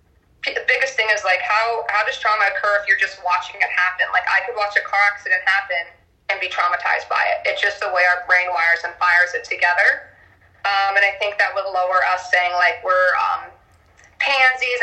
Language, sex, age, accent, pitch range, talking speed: English, female, 20-39, American, 190-255 Hz, 215 wpm